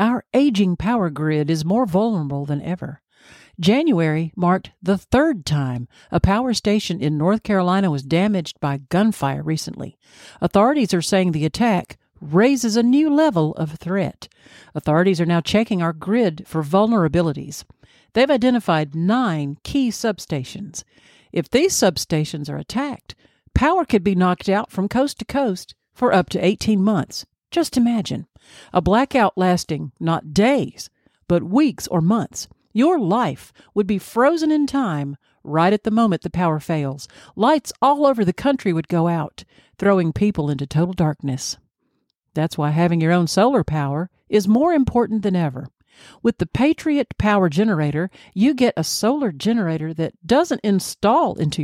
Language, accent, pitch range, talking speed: English, American, 160-235 Hz, 155 wpm